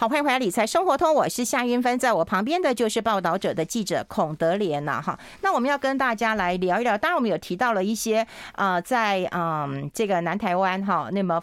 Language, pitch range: Chinese, 190-275 Hz